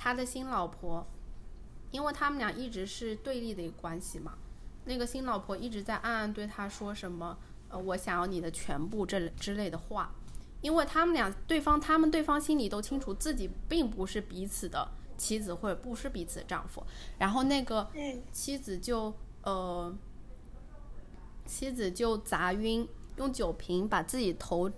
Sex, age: female, 20-39